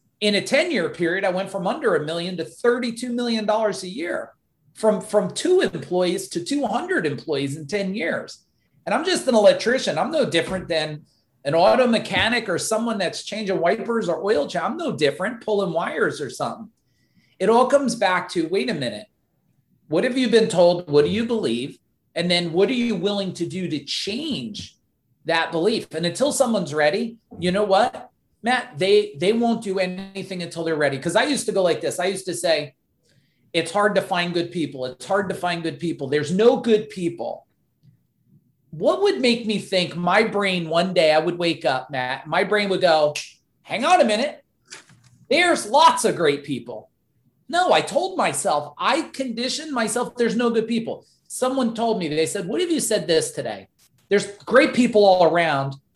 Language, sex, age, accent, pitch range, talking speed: English, male, 40-59, American, 165-230 Hz, 190 wpm